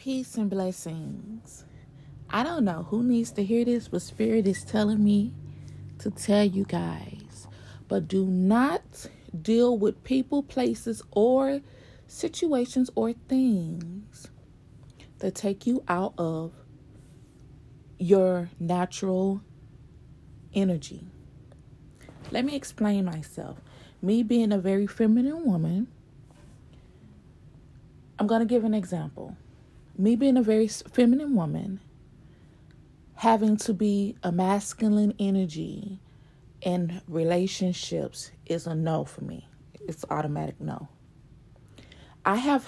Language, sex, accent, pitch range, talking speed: English, female, American, 170-225 Hz, 110 wpm